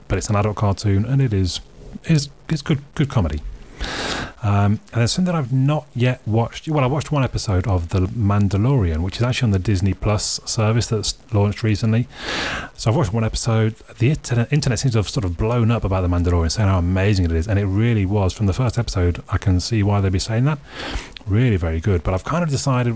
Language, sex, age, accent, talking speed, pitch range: English, male, 30-49, British, 225 wpm, 90-120 Hz